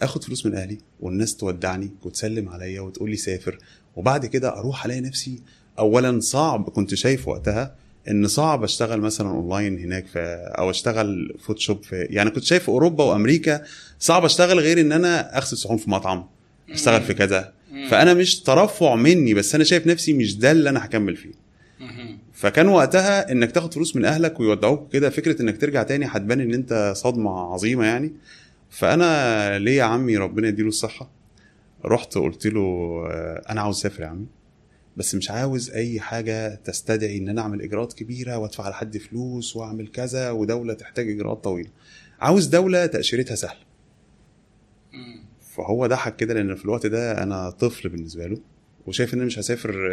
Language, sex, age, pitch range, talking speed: Arabic, male, 20-39, 105-135 Hz, 160 wpm